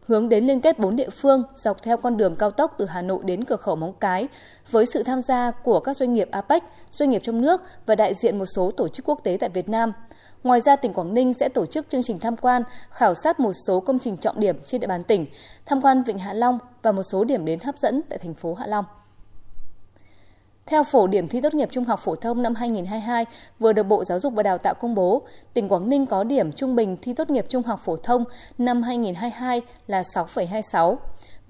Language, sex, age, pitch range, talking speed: Vietnamese, female, 20-39, 190-260 Hz, 240 wpm